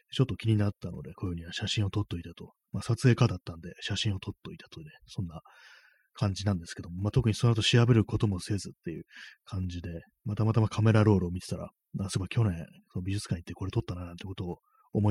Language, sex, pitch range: Japanese, male, 95-115 Hz